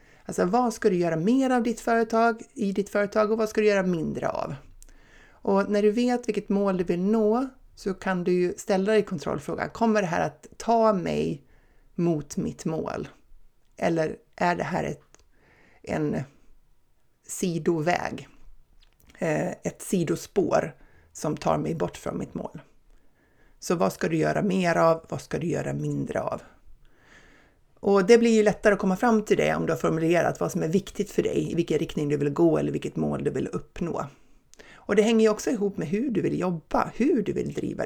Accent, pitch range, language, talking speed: native, 165-215 Hz, Swedish, 190 wpm